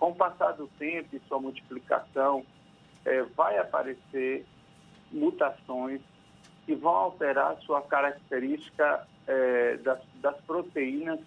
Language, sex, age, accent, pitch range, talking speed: Portuguese, male, 50-69, Brazilian, 130-165 Hz, 110 wpm